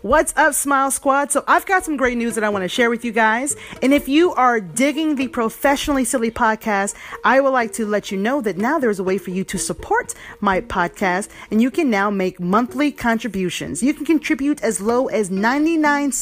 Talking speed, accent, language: 220 wpm, American, English